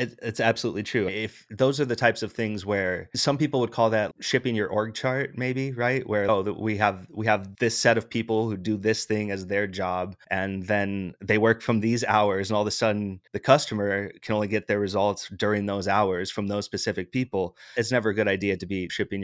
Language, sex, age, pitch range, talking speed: English, male, 20-39, 95-115 Hz, 230 wpm